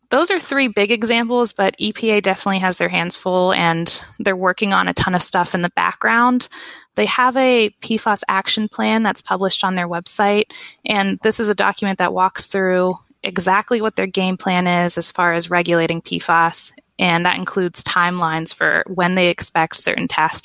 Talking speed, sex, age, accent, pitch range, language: 185 wpm, female, 20-39, American, 175-210 Hz, English